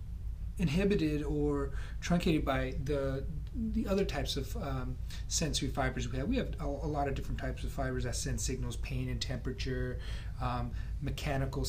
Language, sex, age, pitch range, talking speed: English, male, 30-49, 115-145 Hz, 165 wpm